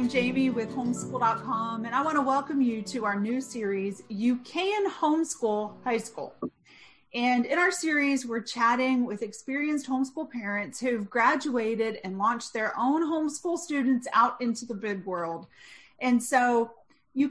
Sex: female